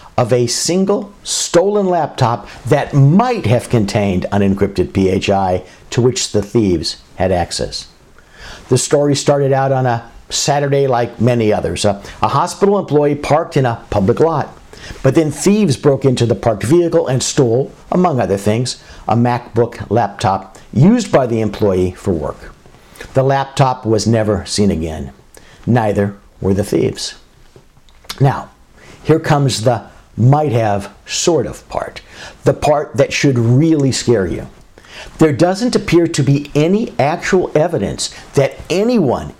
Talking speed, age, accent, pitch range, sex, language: 145 wpm, 60-79, American, 110-145 Hz, male, English